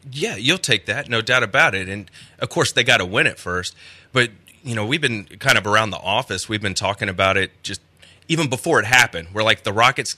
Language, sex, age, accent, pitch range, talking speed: English, male, 30-49, American, 100-145 Hz, 240 wpm